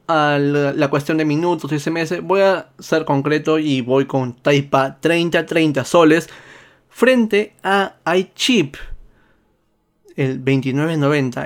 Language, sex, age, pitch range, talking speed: Spanish, male, 20-39, 140-165 Hz, 120 wpm